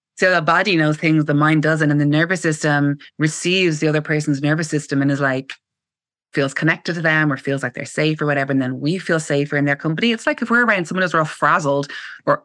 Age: 20-39